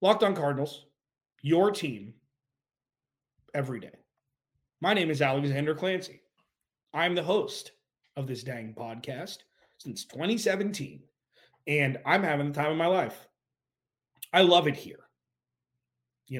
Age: 30-49